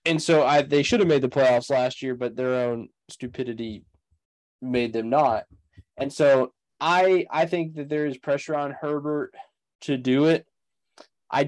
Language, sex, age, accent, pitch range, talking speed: English, male, 10-29, American, 125-155 Hz, 175 wpm